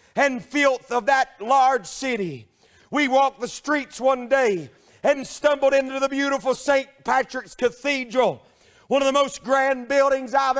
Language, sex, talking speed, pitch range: English, male, 155 wpm, 250-280 Hz